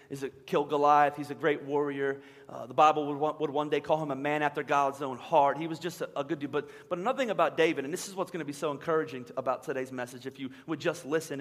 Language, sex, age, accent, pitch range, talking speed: English, male, 30-49, American, 150-195 Hz, 290 wpm